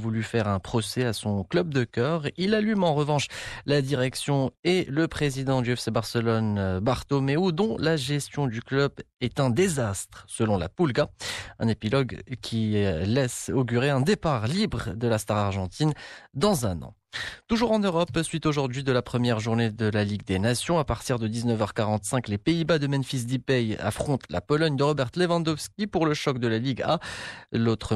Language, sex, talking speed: Arabic, male, 180 wpm